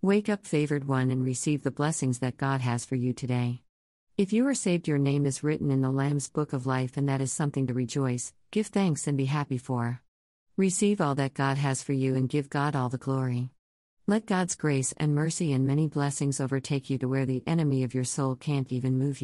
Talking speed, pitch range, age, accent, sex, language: 230 wpm, 130-170 Hz, 50-69, American, female, English